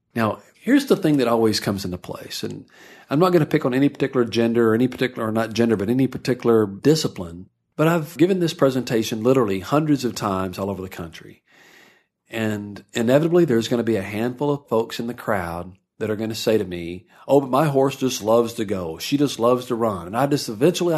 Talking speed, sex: 225 wpm, male